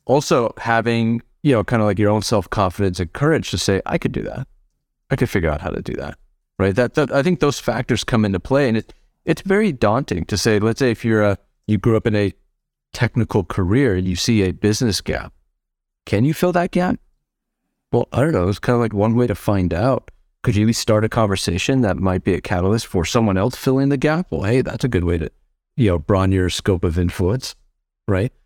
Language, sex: English, male